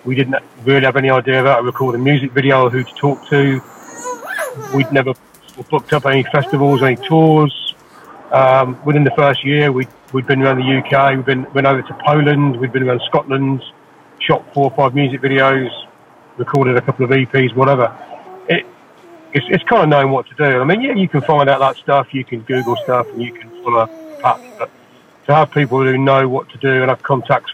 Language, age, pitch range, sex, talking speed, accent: English, 40-59, 130-155 Hz, male, 205 wpm, British